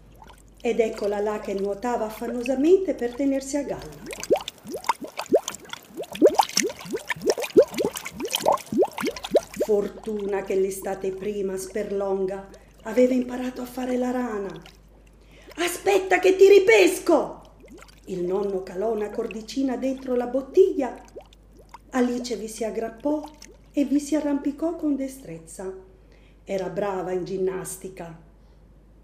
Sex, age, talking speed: female, 40-59, 95 wpm